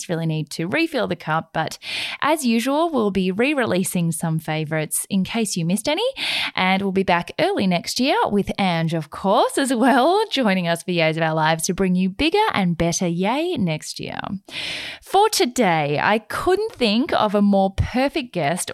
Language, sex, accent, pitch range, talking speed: English, female, Australian, 170-265 Hz, 190 wpm